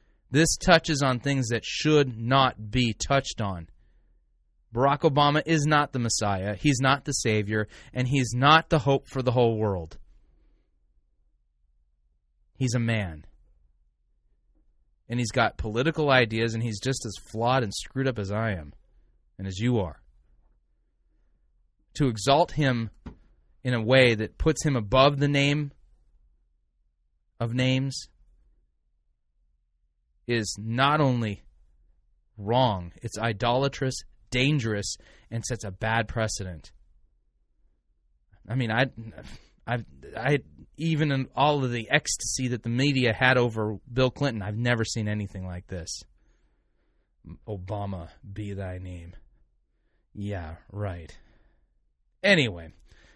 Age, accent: 30-49, American